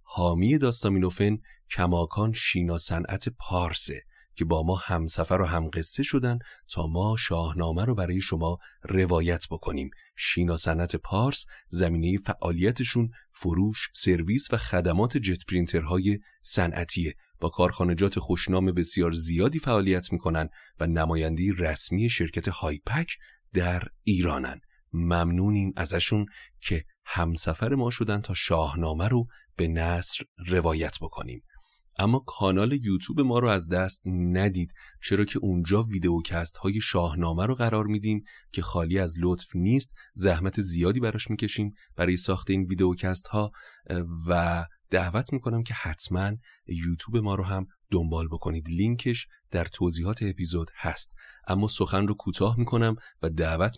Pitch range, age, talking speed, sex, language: 85-105 Hz, 30-49, 125 wpm, male, Persian